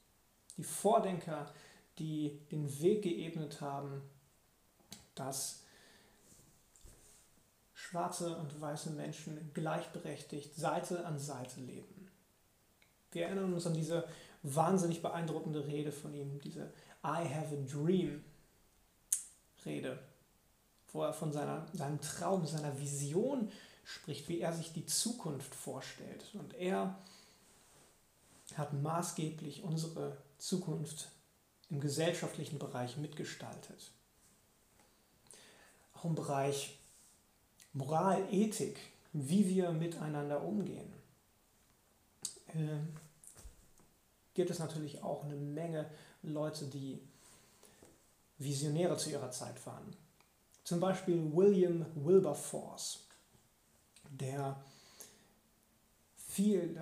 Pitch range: 145-170 Hz